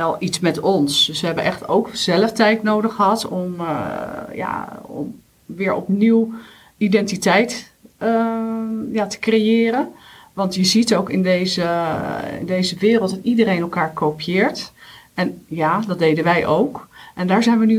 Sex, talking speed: female, 165 wpm